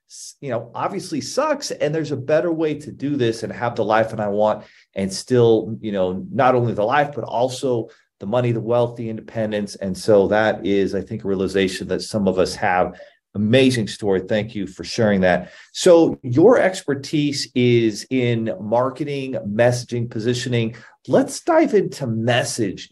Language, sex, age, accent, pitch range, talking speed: English, male, 40-59, American, 105-130 Hz, 175 wpm